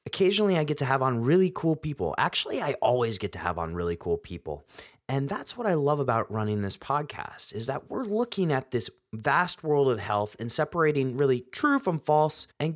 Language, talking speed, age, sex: English, 210 wpm, 30-49, male